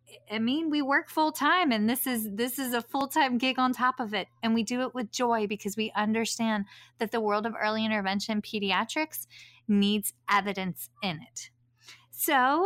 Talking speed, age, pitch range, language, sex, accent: 180 wpm, 30-49, 195-240 Hz, English, female, American